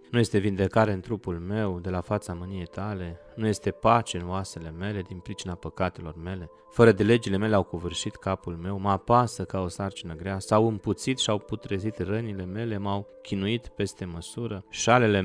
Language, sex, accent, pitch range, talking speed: Romanian, male, native, 90-110 Hz, 180 wpm